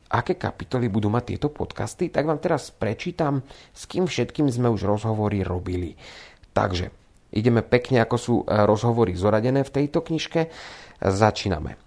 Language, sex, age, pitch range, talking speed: Slovak, male, 40-59, 100-135 Hz, 140 wpm